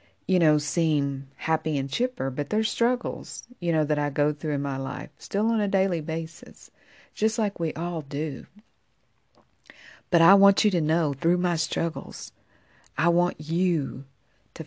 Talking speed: 170 wpm